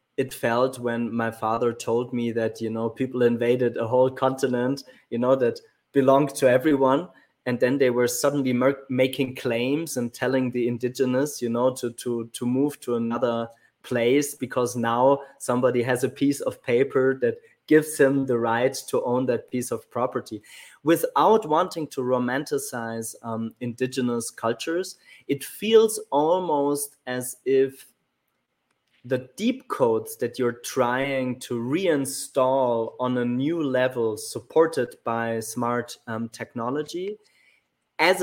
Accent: German